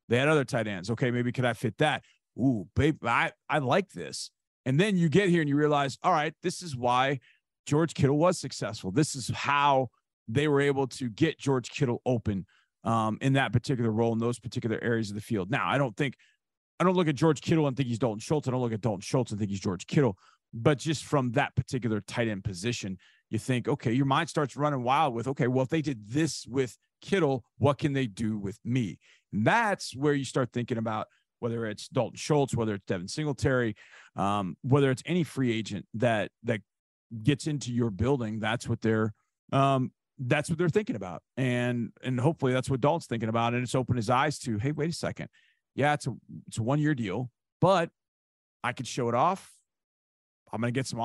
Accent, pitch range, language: American, 115-145 Hz, English